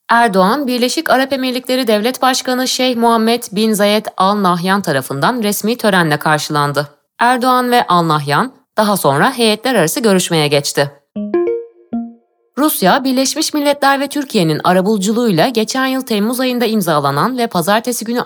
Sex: female